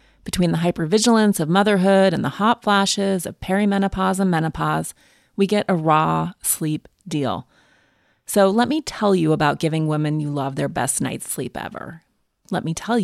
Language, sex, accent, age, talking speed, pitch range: English, female, American, 30-49, 170 wpm, 165-210 Hz